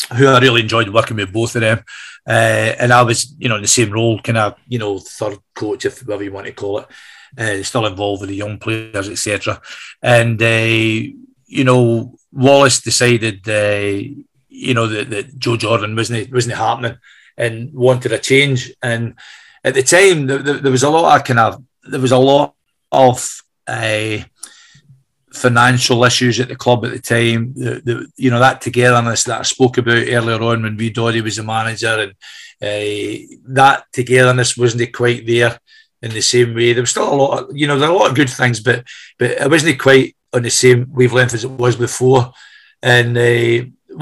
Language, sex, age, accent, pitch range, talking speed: English, male, 40-59, British, 115-130 Hz, 205 wpm